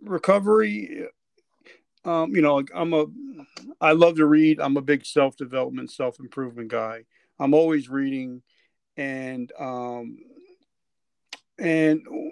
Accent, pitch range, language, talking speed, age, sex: American, 130-160 Hz, English, 115 wpm, 40-59, male